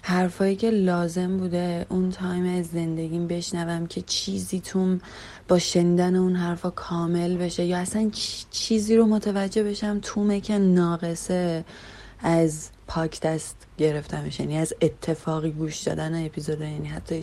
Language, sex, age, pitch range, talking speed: Persian, female, 30-49, 155-185 Hz, 135 wpm